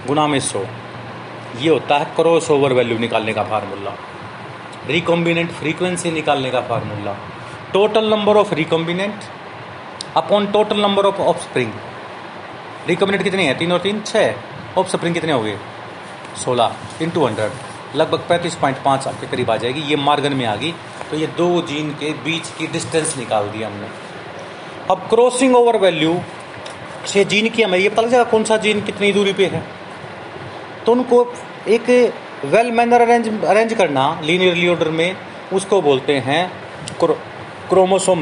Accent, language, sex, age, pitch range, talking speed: native, Hindi, male, 30-49, 145-200 Hz, 150 wpm